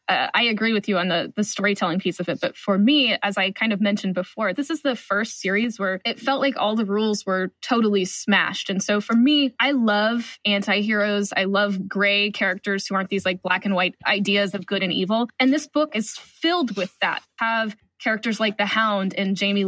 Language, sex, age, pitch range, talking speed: English, female, 10-29, 195-235 Hz, 225 wpm